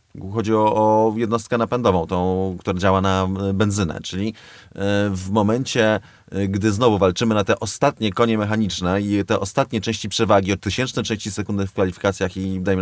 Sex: male